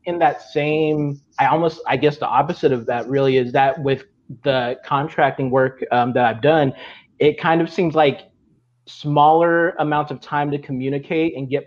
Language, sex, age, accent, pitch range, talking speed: English, male, 30-49, American, 130-150 Hz, 180 wpm